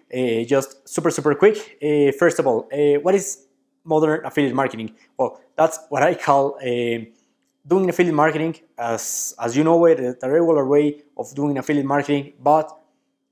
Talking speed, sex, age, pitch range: 170 wpm, male, 20-39, 130-155 Hz